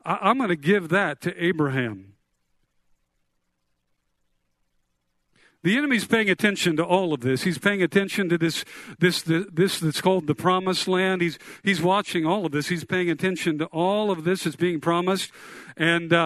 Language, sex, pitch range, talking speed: English, male, 150-190 Hz, 165 wpm